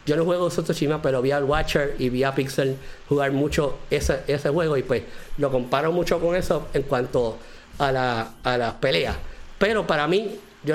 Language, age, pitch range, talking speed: English, 50-69, 140-175 Hz, 200 wpm